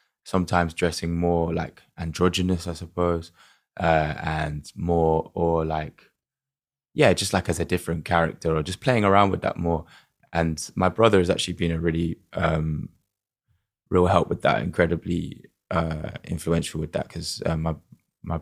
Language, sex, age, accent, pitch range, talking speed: English, male, 20-39, British, 80-90 Hz, 155 wpm